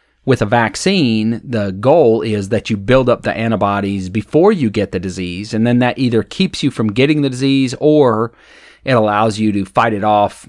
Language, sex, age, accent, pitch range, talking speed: English, male, 30-49, American, 100-125 Hz, 200 wpm